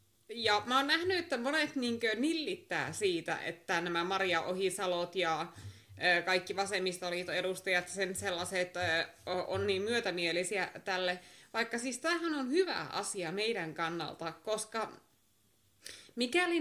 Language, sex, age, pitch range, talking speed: Finnish, female, 20-39, 180-250 Hz, 125 wpm